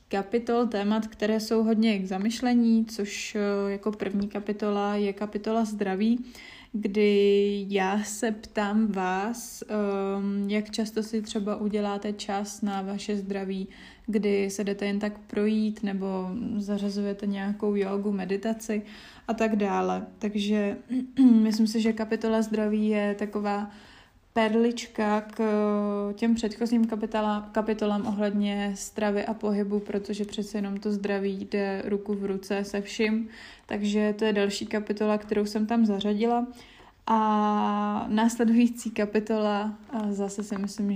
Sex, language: female, Czech